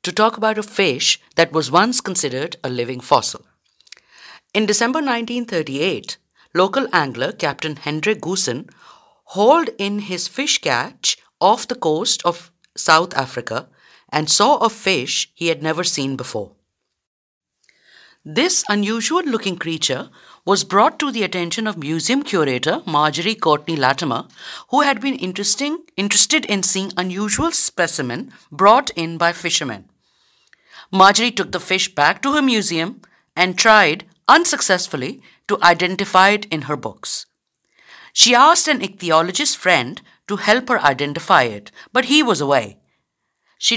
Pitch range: 160-220 Hz